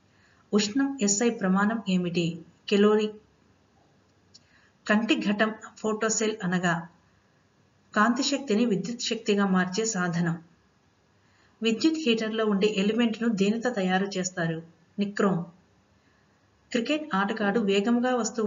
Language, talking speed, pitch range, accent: Telugu, 90 wpm, 185-230 Hz, native